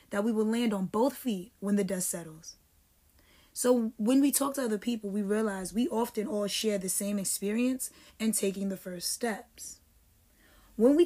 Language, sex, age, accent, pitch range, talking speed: English, female, 20-39, American, 190-240 Hz, 185 wpm